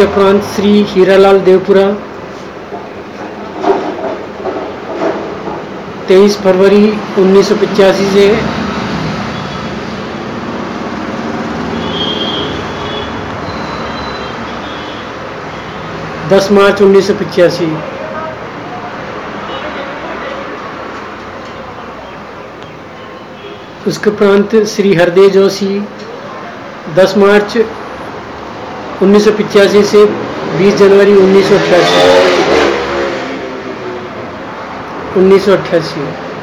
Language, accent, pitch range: Hindi, native, 185-205 Hz